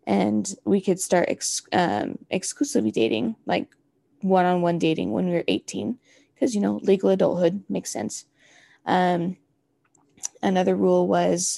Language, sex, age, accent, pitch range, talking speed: English, female, 20-39, American, 170-195 Hz, 130 wpm